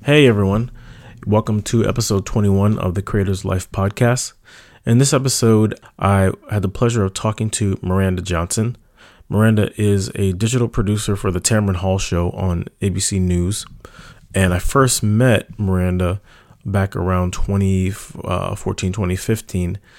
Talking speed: 140 wpm